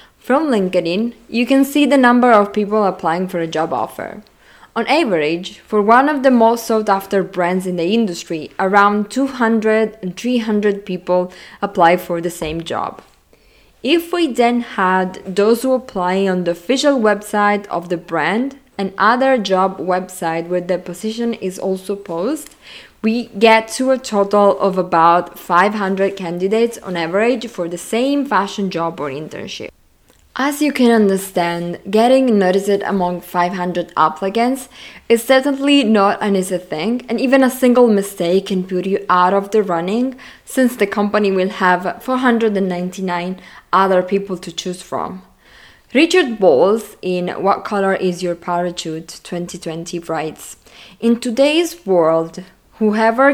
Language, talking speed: English, 145 wpm